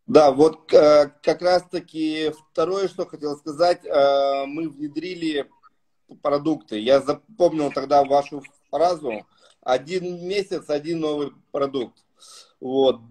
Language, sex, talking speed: Russian, male, 105 wpm